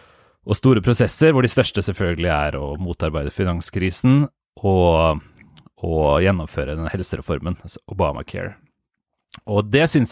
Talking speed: 120 wpm